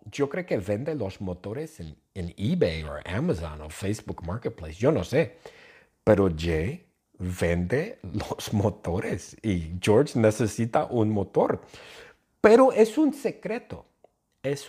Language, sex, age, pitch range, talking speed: English, male, 50-69, 90-130 Hz, 130 wpm